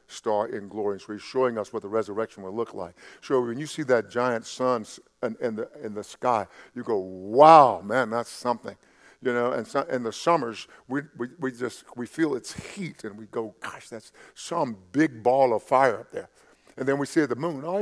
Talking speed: 220 wpm